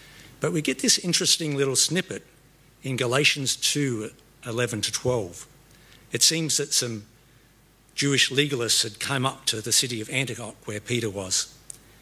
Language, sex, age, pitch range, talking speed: English, male, 50-69, 115-150 Hz, 150 wpm